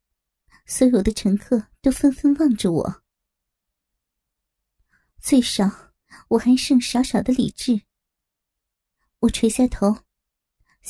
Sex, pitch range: male, 225-265 Hz